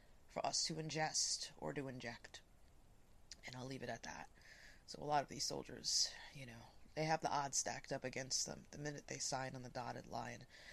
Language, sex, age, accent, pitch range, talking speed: English, female, 20-39, American, 135-175 Hz, 205 wpm